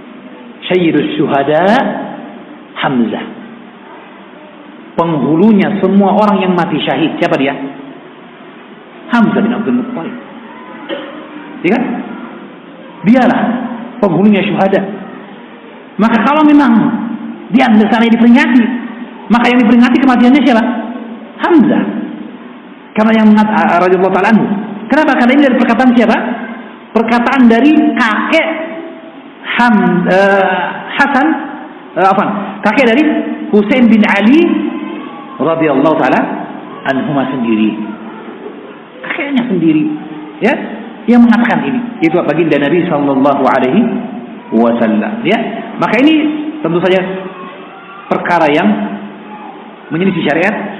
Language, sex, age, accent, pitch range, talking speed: Indonesian, male, 50-69, native, 200-260 Hz, 90 wpm